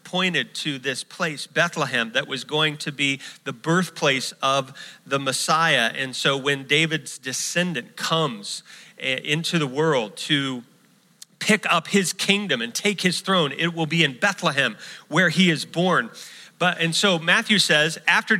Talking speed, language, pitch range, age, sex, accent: 155 wpm, English, 155-210 Hz, 40-59, male, American